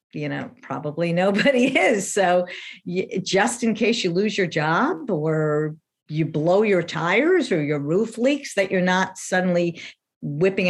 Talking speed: 150 wpm